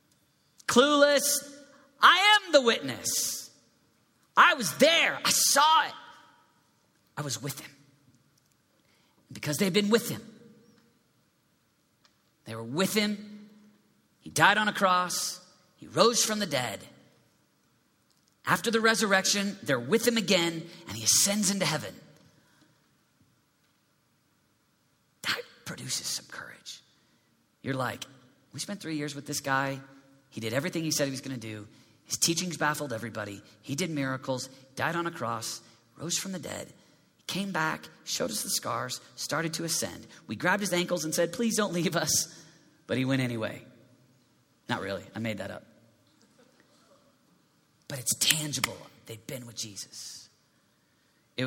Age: 40-59